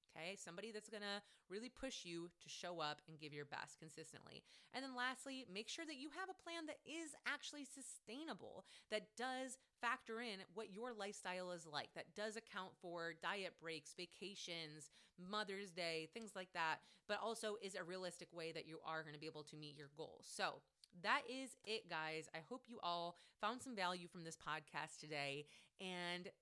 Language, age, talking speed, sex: English, 30-49, 190 wpm, female